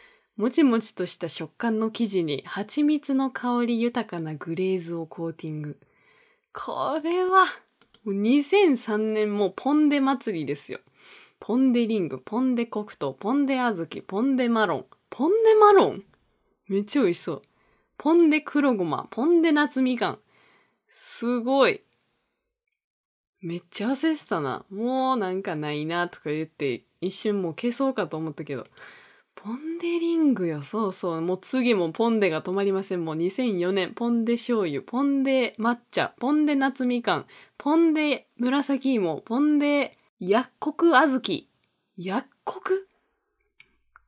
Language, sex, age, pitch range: Japanese, female, 20-39, 185-280 Hz